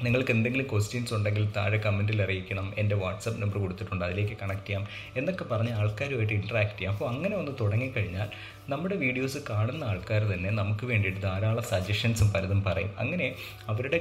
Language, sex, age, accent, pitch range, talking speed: Malayalam, male, 30-49, native, 105-120 Hz, 155 wpm